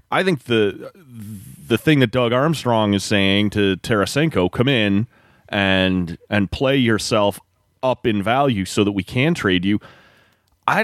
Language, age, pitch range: English, 30-49, 100-130 Hz